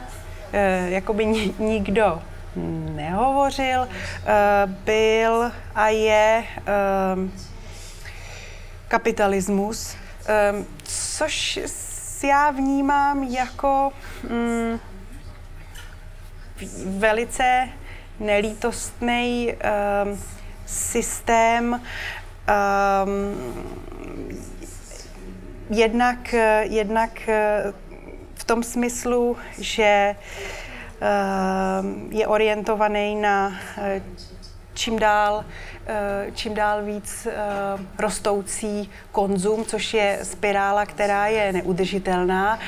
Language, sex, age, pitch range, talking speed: Slovak, female, 30-49, 195-230 Hz, 55 wpm